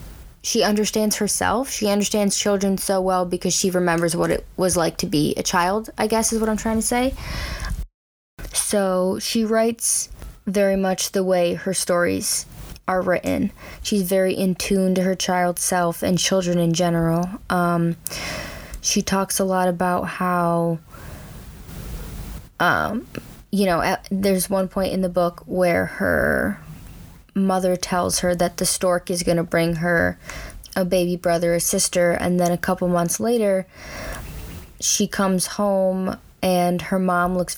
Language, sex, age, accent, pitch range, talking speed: English, female, 20-39, American, 175-195 Hz, 155 wpm